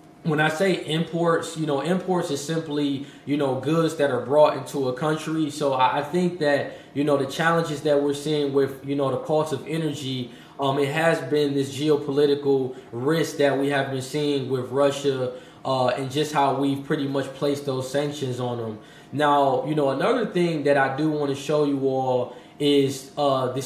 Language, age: English, 20-39